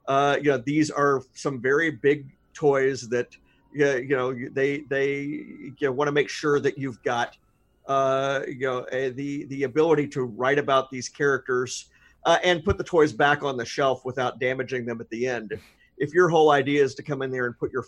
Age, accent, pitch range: 50-69, American, 130-155 Hz